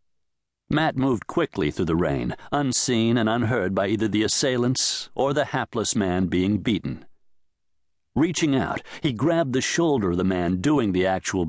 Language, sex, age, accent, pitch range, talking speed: English, male, 60-79, American, 90-140 Hz, 160 wpm